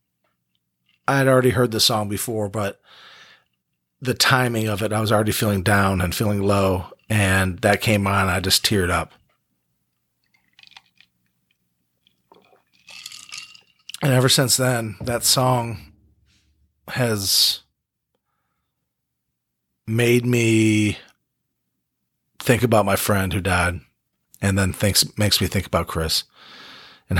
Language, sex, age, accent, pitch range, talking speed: English, male, 40-59, American, 85-110 Hz, 115 wpm